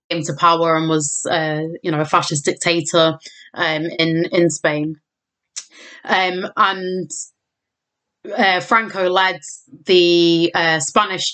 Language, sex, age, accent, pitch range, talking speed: English, female, 20-39, British, 160-180 Hz, 115 wpm